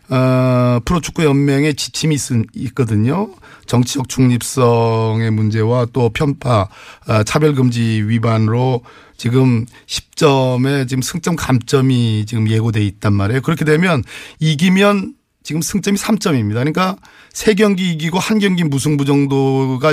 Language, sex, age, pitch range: Korean, male, 40-59, 115-160 Hz